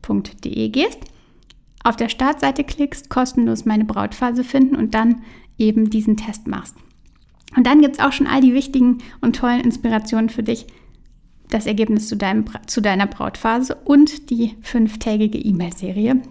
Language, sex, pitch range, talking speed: German, female, 220-260 Hz, 155 wpm